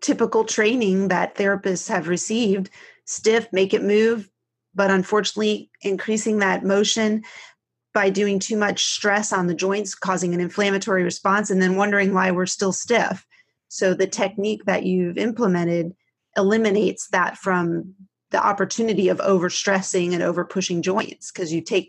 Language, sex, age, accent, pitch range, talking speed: English, female, 30-49, American, 180-215 Hz, 145 wpm